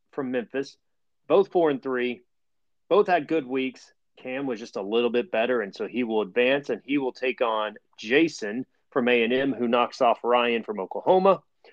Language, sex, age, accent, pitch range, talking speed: English, male, 30-49, American, 120-160 Hz, 185 wpm